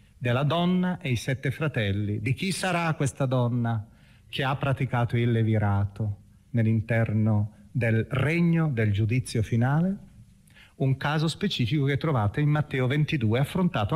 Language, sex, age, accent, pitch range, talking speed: Italian, male, 40-59, native, 110-150 Hz, 135 wpm